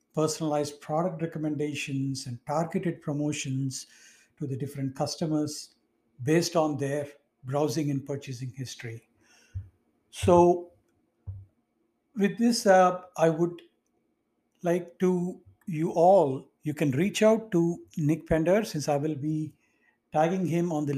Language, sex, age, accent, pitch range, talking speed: English, male, 60-79, Indian, 140-175 Hz, 120 wpm